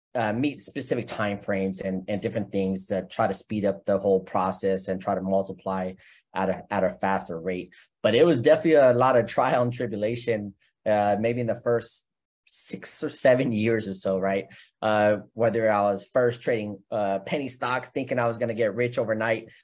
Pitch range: 100-120 Hz